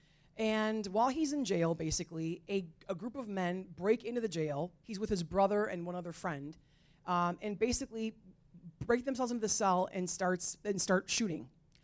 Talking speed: 180 wpm